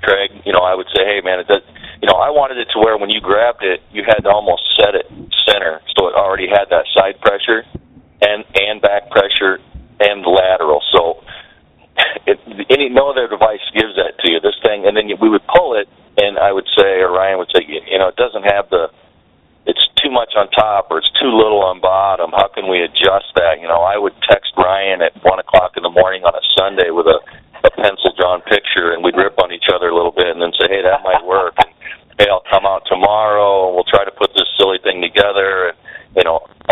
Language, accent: English, American